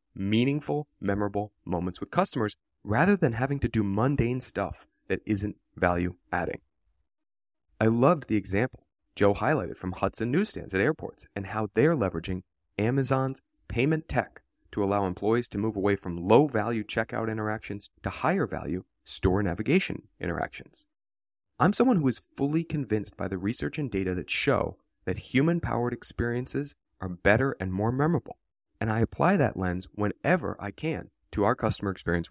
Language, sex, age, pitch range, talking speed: English, male, 30-49, 95-130 Hz, 150 wpm